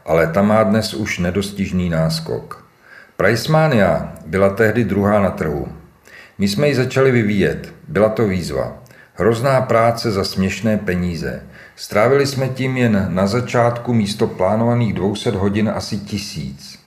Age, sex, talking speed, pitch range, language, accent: 50-69, male, 135 wpm, 100-125 Hz, Czech, native